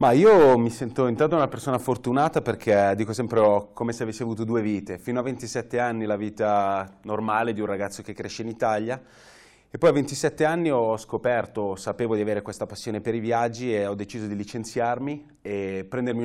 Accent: native